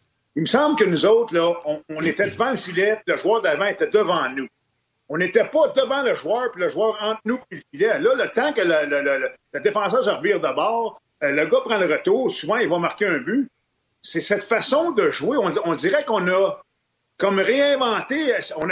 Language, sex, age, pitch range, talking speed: French, male, 50-69, 175-295 Hz, 230 wpm